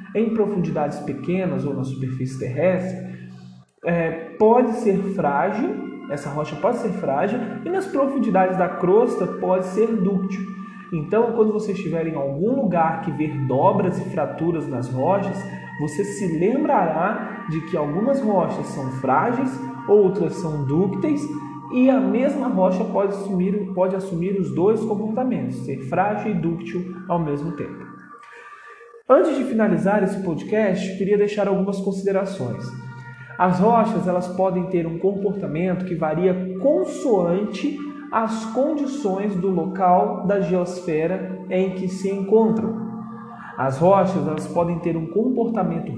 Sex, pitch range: male, 170-220 Hz